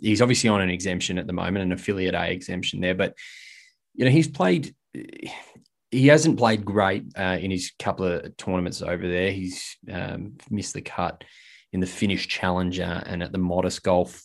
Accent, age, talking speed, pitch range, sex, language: Australian, 20-39, 190 wpm, 90-105 Hz, male, English